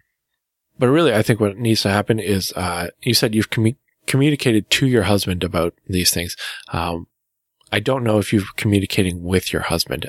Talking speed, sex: 190 wpm, male